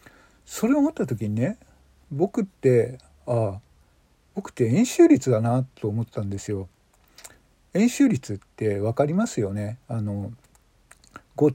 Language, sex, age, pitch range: Japanese, male, 50-69, 115-165 Hz